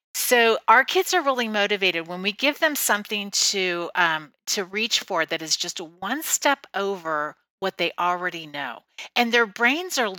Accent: American